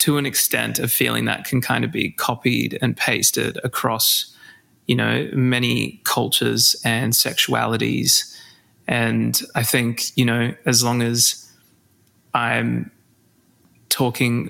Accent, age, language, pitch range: Australian, 20-39, English, 115-130 Hz